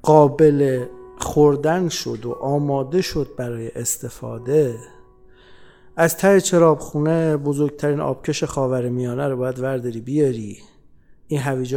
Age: 50-69